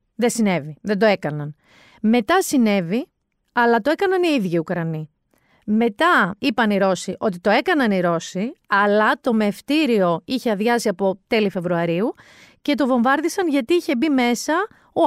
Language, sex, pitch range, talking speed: Greek, female, 185-270 Hz, 150 wpm